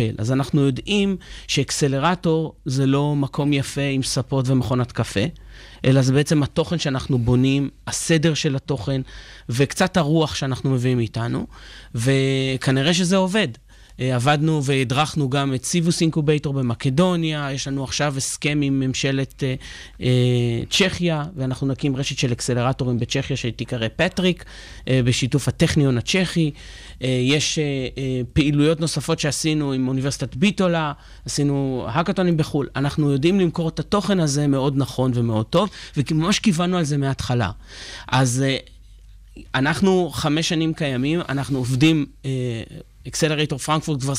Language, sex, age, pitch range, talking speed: Hebrew, male, 30-49, 130-160 Hz, 130 wpm